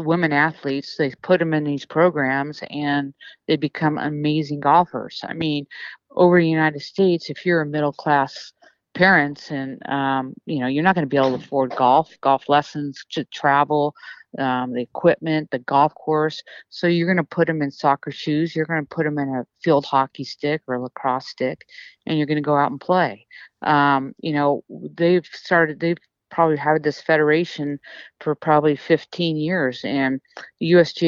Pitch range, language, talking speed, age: 140-160 Hz, English, 185 wpm, 50-69